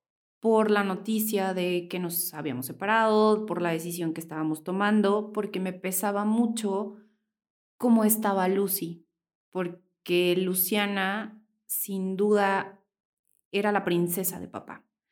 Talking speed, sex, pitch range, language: 120 wpm, female, 170-200 Hz, Spanish